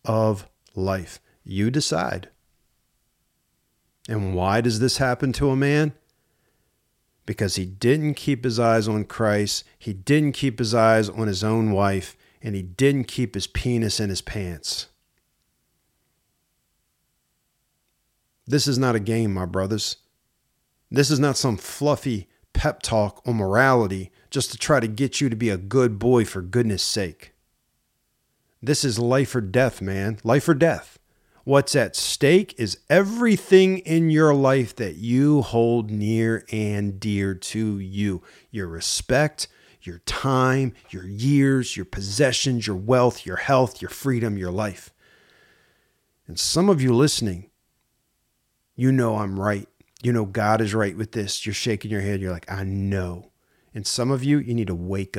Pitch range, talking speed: 100-130 Hz, 155 wpm